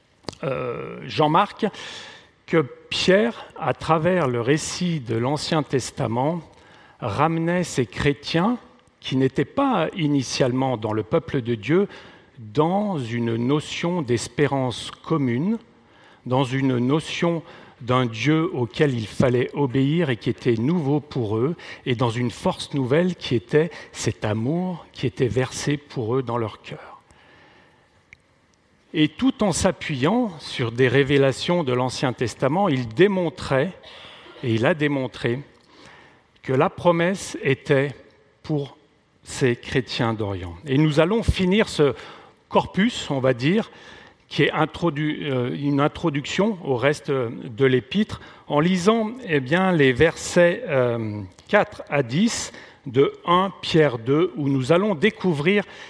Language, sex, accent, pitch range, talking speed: French, male, French, 125-175 Hz, 125 wpm